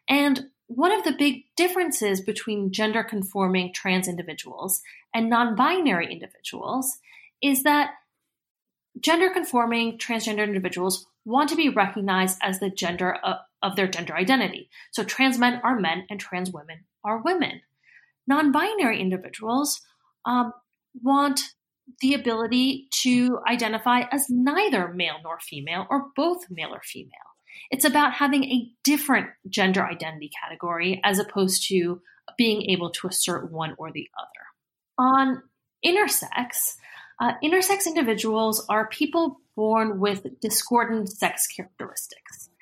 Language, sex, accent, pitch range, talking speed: English, female, American, 190-265 Hz, 125 wpm